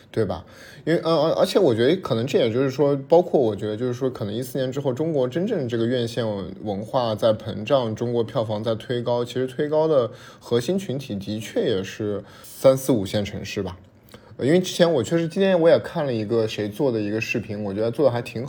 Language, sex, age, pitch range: Chinese, male, 20-39, 105-140 Hz